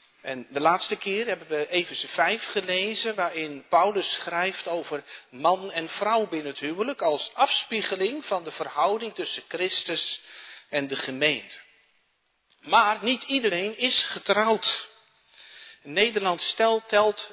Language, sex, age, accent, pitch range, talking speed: Dutch, male, 50-69, Dutch, 140-195 Hz, 130 wpm